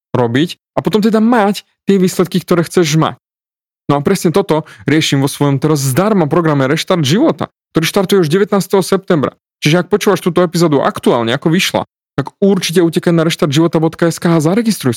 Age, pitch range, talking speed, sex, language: 30-49, 135-180 Hz, 170 wpm, male, Slovak